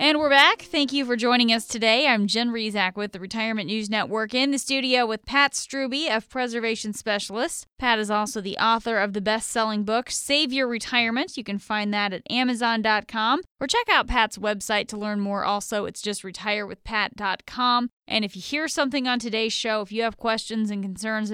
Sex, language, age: female, English, 10-29